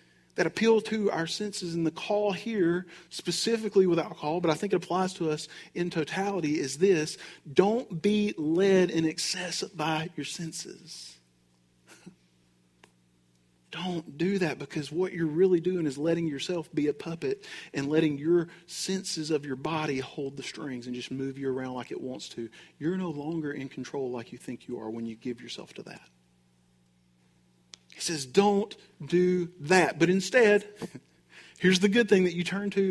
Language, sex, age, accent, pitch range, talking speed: English, male, 40-59, American, 135-185 Hz, 175 wpm